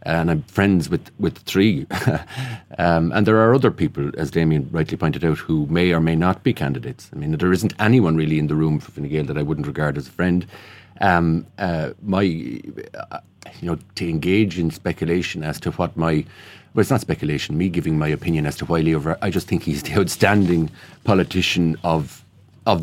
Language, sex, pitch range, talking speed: English, male, 80-100 Hz, 205 wpm